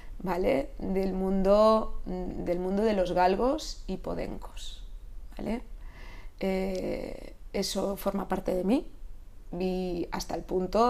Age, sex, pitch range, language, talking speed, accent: 20-39, female, 180-210 Hz, Spanish, 115 wpm, Spanish